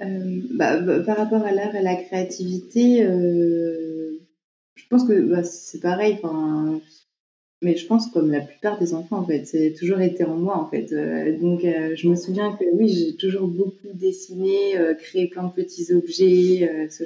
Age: 30-49